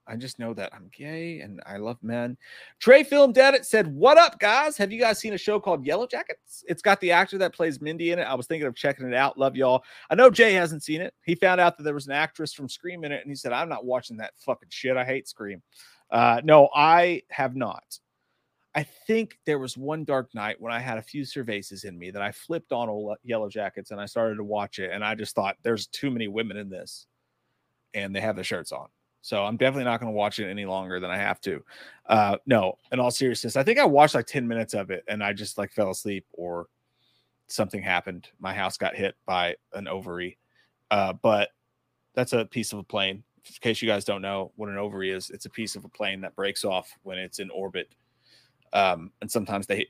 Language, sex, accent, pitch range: English, male, American, 105-155 Hz